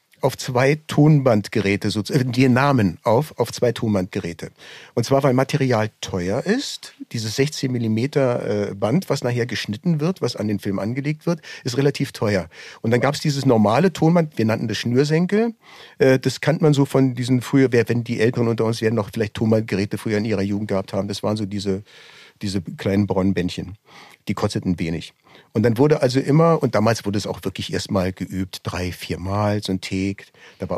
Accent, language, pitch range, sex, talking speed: German, German, 100-135 Hz, male, 185 wpm